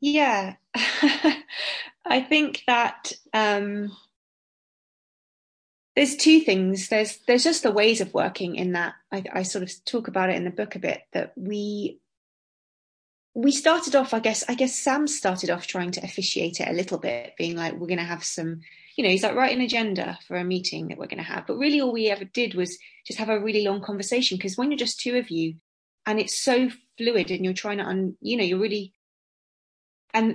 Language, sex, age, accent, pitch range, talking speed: English, female, 20-39, British, 185-240 Hz, 205 wpm